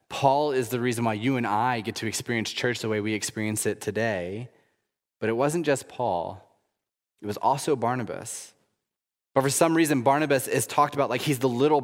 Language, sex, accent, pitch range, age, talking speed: English, male, American, 115-145 Hz, 20-39, 200 wpm